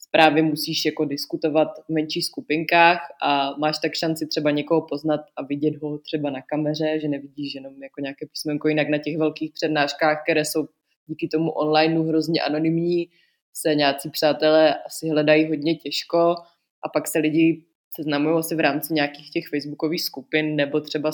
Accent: native